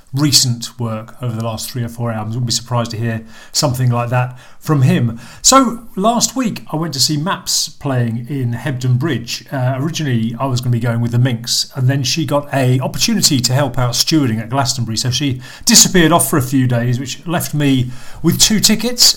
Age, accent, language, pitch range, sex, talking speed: 40-59, British, English, 120-150 Hz, male, 215 wpm